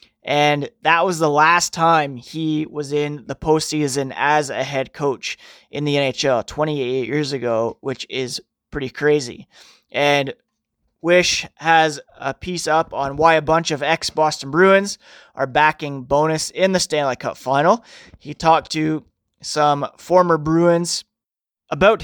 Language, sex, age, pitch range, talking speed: English, male, 20-39, 140-165 Hz, 145 wpm